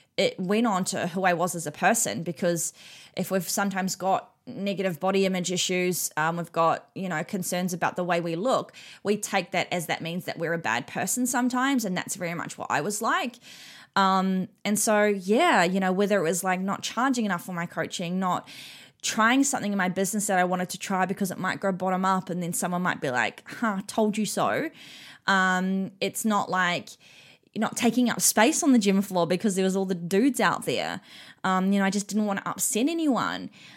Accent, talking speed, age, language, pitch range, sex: Australian, 220 wpm, 20-39, English, 185-220 Hz, female